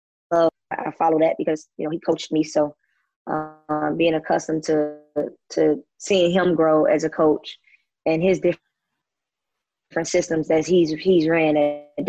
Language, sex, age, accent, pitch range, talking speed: English, female, 20-39, American, 155-185 Hz, 160 wpm